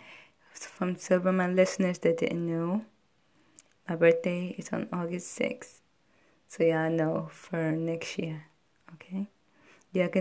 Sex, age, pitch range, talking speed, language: female, 20-39, 165-190 Hz, 140 wpm, English